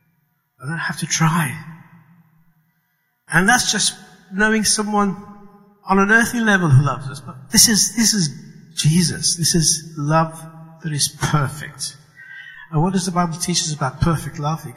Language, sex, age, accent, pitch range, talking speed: English, male, 60-79, British, 130-165 Hz, 165 wpm